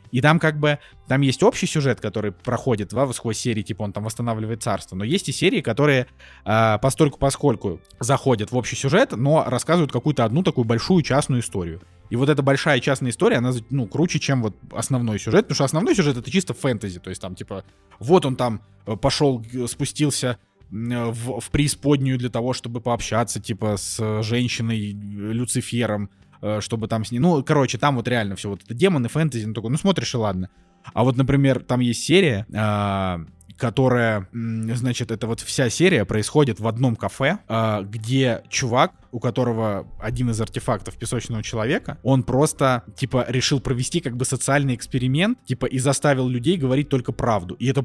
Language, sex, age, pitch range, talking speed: Russian, male, 20-39, 110-135 Hz, 180 wpm